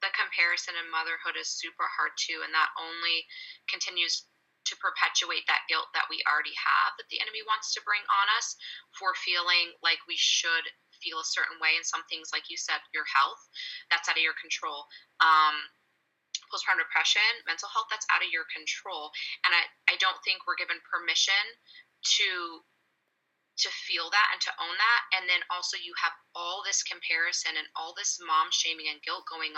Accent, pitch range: American, 160-210 Hz